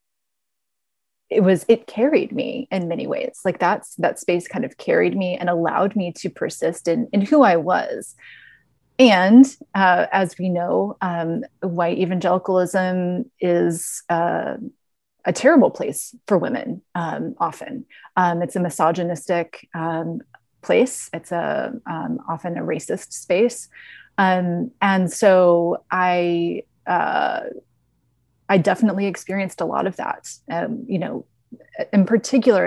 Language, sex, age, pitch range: English, female, 30-49, 175-215 Hz